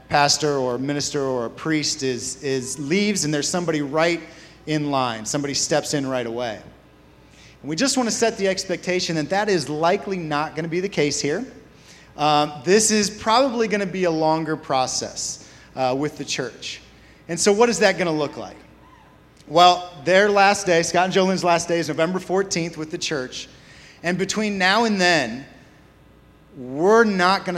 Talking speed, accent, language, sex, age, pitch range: 185 wpm, American, English, male, 30-49, 140-180 Hz